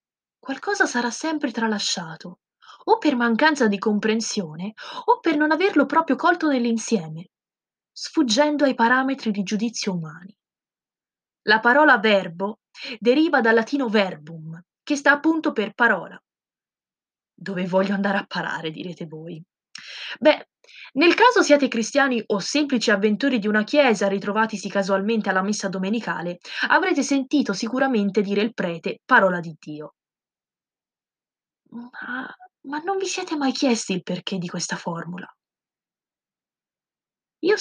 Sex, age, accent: female, 20-39, native